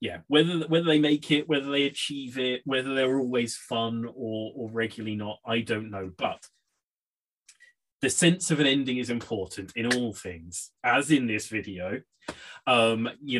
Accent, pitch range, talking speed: British, 105-125 Hz, 170 wpm